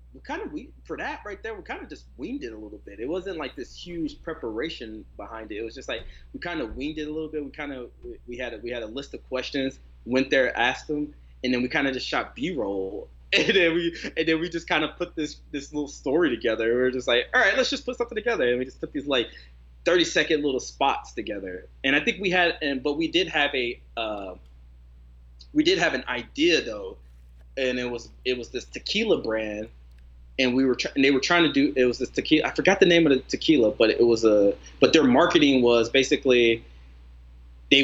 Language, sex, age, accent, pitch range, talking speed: English, male, 20-39, American, 110-175 Hz, 245 wpm